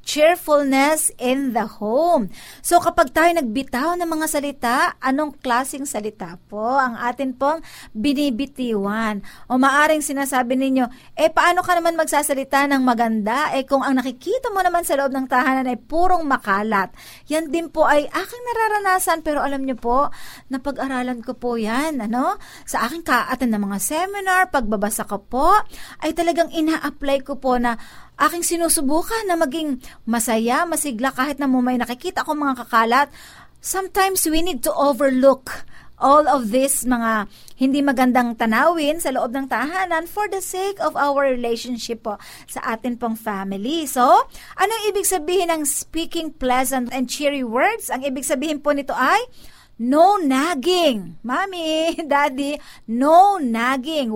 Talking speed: 155 wpm